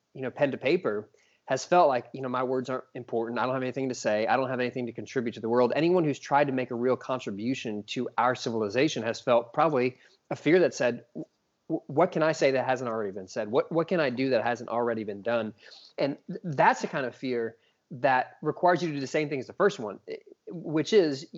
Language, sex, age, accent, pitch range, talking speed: English, male, 20-39, American, 125-165 Hz, 240 wpm